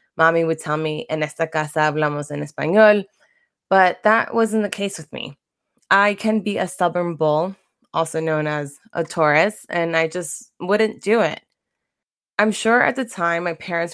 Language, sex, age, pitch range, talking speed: English, female, 20-39, 155-195 Hz, 175 wpm